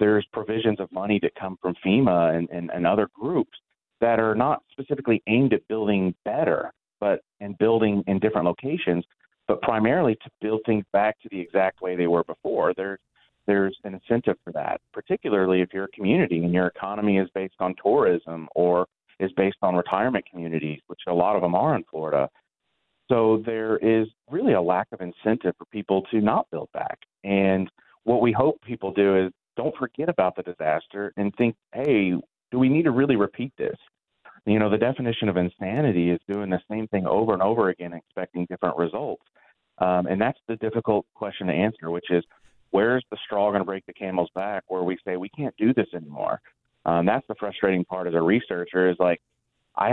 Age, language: 30-49, English